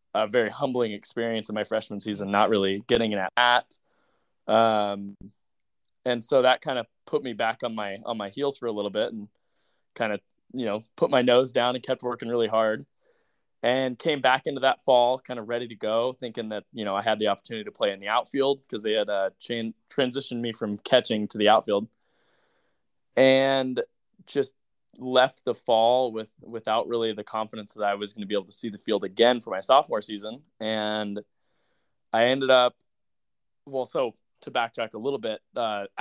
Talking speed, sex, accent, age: 200 wpm, male, American, 20-39